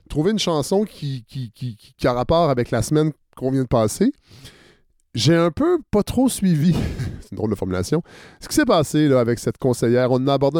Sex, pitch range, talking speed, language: male, 120-165 Hz, 205 wpm, French